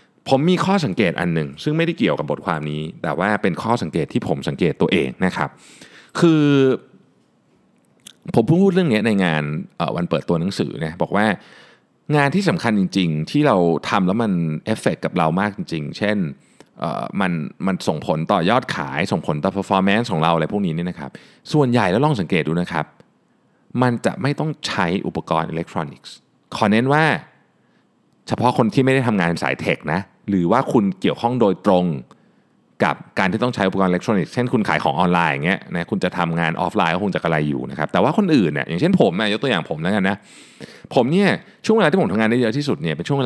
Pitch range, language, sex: 85-135 Hz, Thai, male